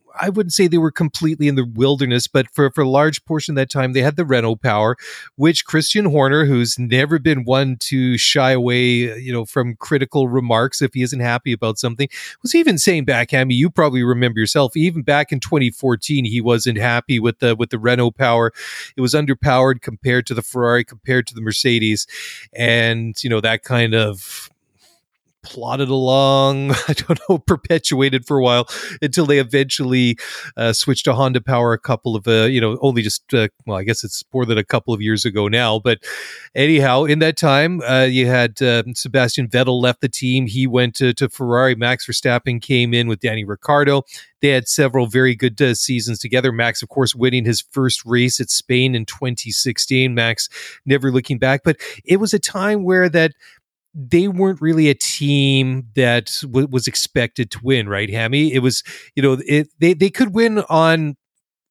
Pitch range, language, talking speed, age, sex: 120-145 Hz, English, 195 wpm, 30-49, male